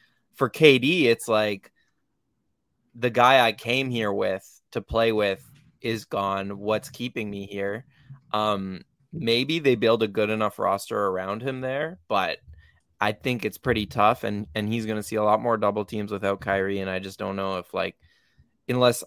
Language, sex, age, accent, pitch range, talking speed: English, male, 20-39, American, 100-115 Hz, 180 wpm